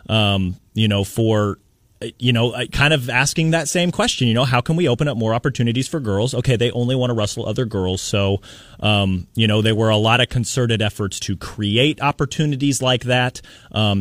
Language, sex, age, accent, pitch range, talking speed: English, male, 30-49, American, 100-125 Hz, 205 wpm